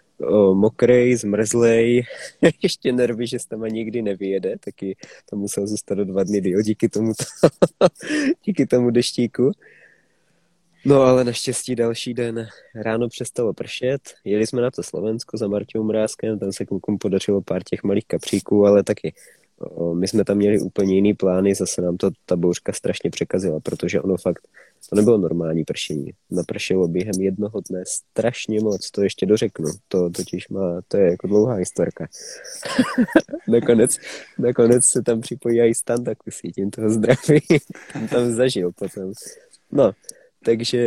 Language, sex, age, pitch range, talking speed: Czech, male, 20-39, 100-120 Hz, 155 wpm